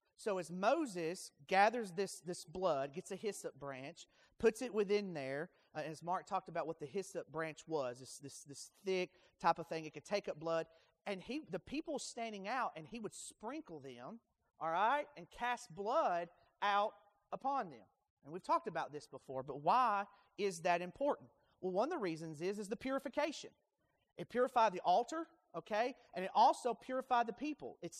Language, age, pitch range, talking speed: English, 40-59, 175-240 Hz, 190 wpm